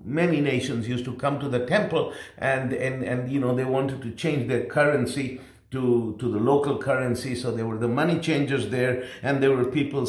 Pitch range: 120-155 Hz